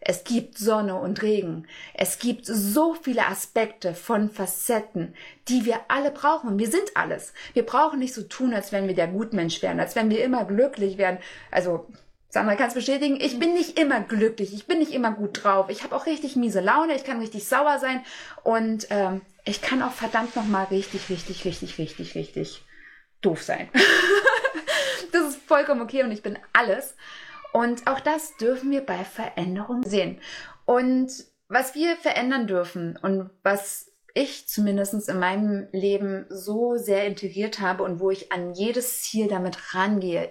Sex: female